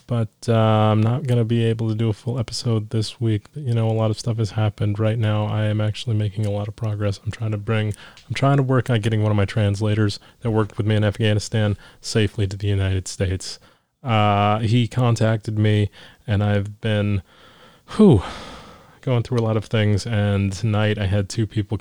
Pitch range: 100-120 Hz